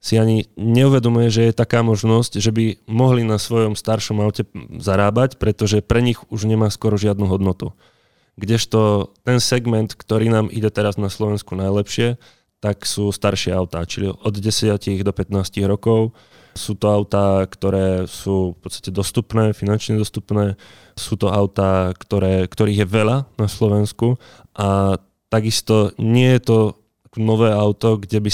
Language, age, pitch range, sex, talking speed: Slovak, 20-39, 100-115 Hz, male, 150 wpm